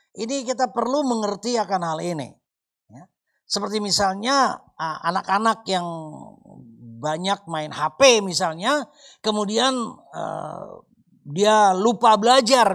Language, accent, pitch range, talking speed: Indonesian, native, 180-245 Hz, 100 wpm